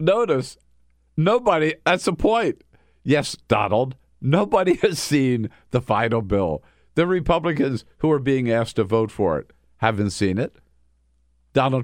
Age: 50-69